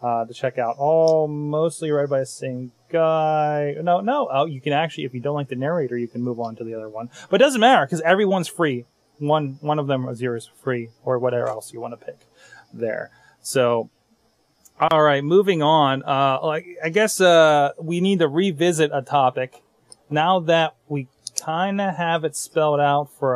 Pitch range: 125-155 Hz